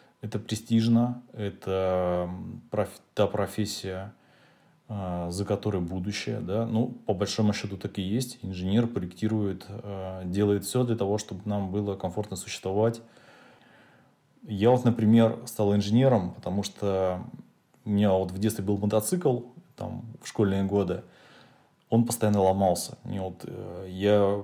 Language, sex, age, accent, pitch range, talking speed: Russian, male, 20-39, native, 95-110 Hz, 125 wpm